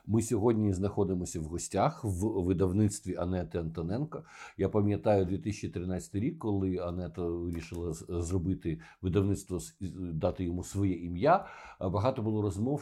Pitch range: 95-120 Hz